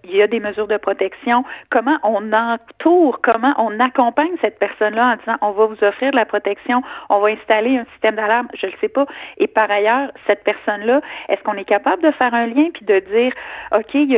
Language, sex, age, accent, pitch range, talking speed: French, female, 40-59, Canadian, 210-280 Hz, 235 wpm